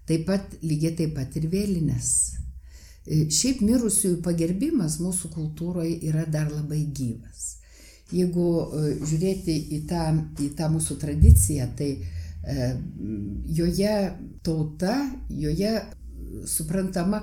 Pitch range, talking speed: 135-170 Hz, 100 wpm